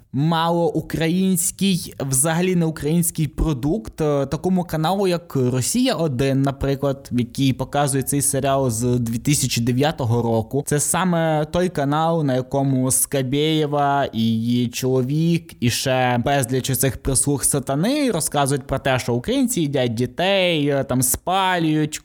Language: Ukrainian